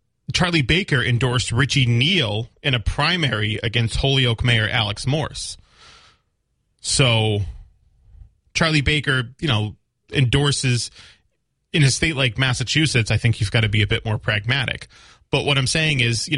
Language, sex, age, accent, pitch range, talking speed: English, male, 30-49, American, 105-135 Hz, 145 wpm